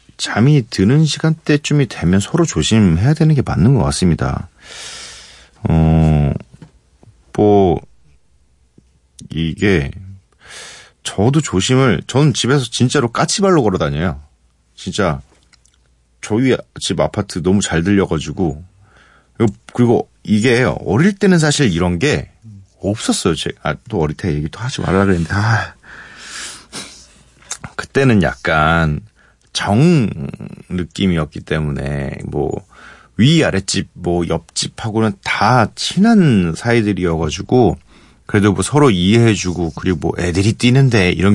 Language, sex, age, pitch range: Korean, male, 40-59, 80-115 Hz